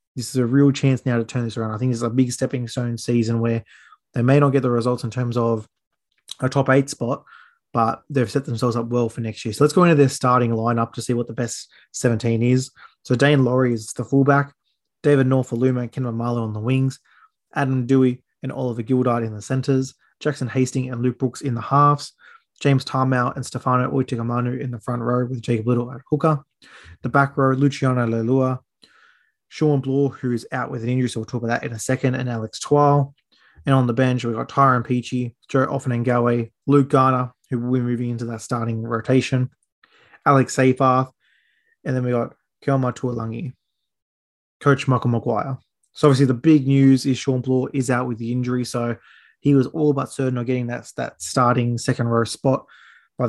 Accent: Australian